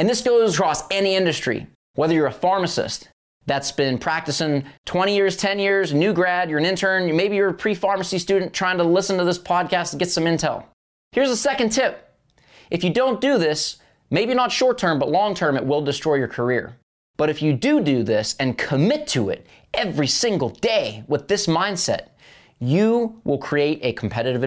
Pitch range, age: 125-180 Hz, 20-39